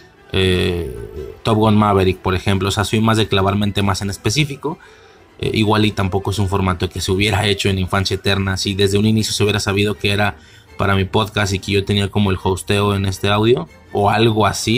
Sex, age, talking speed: male, 20-39, 225 wpm